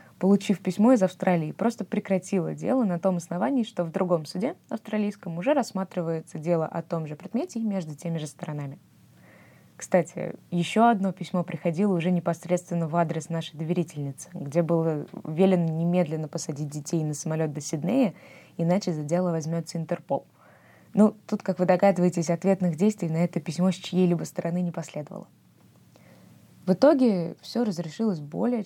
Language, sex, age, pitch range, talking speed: Russian, female, 20-39, 165-200 Hz, 155 wpm